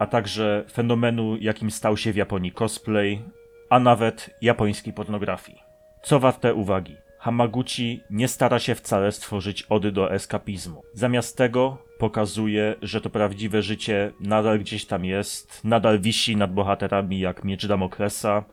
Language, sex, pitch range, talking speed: Polish, male, 100-115 Hz, 140 wpm